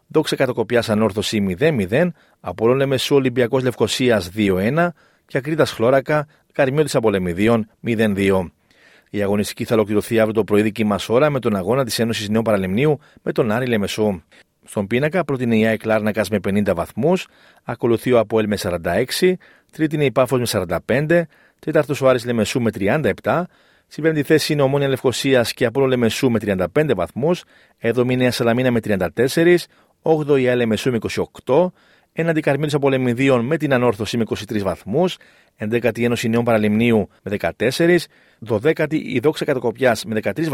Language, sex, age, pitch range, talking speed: Greek, male, 40-59, 105-135 Hz, 145 wpm